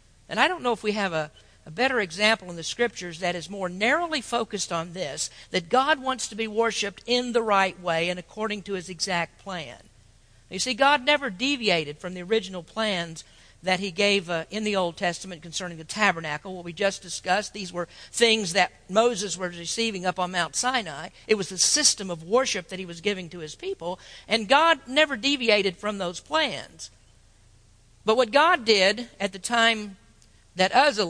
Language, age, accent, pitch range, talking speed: English, 50-69, American, 175-230 Hz, 195 wpm